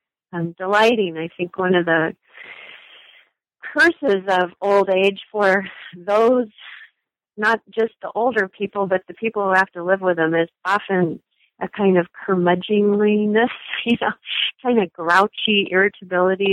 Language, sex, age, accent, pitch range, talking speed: English, female, 30-49, American, 170-205 Hz, 140 wpm